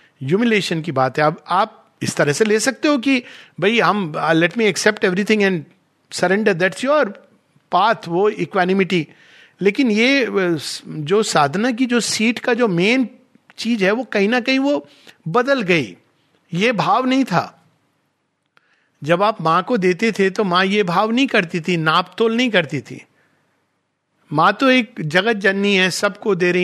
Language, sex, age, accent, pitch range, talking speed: Hindi, male, 50-69, native, 170-225 Hz, 170 wpm